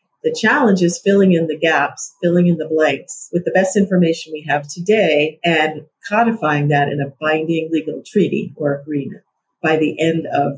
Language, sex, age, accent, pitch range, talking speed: English, female, 50-69, American, 150-180 Hz, 180 wpm